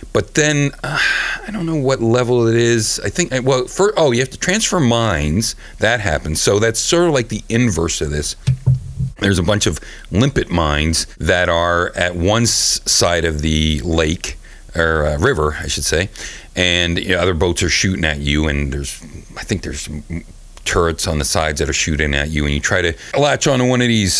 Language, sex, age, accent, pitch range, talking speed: English, male, 40-59, American, 80-115 Hz, 210 wpm